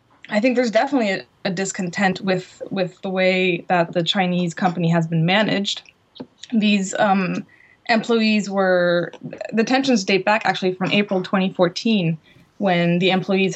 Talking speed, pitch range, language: 150 wpm, 180-210 Hz, English